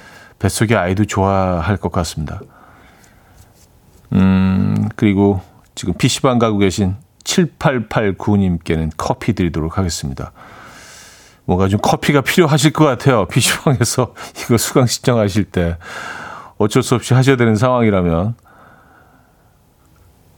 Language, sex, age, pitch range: Korean, male, 40-59, 95-145 Hz